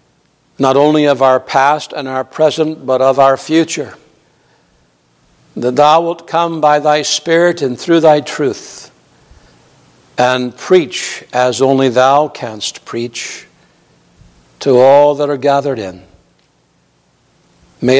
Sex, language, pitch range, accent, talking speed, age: male, English, 125-145 Hz, American, 125 wpm, 60-79